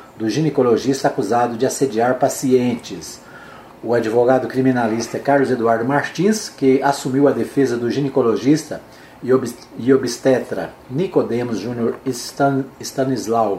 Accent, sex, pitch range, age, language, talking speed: Brazilian, male, 130-150 Hz, 40-59, Portuguese, 105 wpm